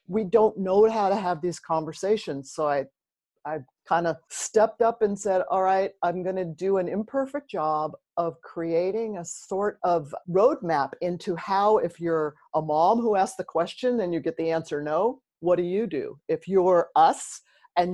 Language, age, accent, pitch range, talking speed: English, 50-69, American, 170-220 Hz, 185 wpm